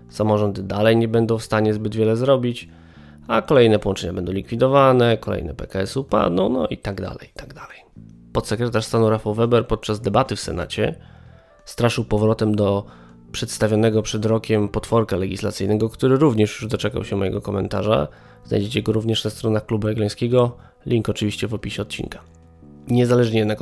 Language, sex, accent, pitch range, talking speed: Polish, male, native, 100-110 Hz, 160 wpm